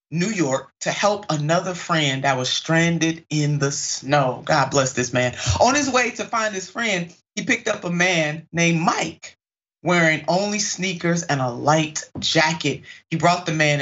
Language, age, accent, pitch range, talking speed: English, 30-49, American, 140-175 Hz, 180 wpm